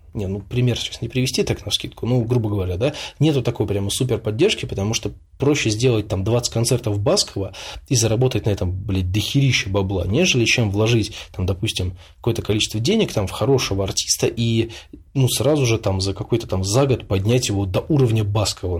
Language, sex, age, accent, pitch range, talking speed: Russian, male, 20-39, native, 95-125 Hz, 190 wpm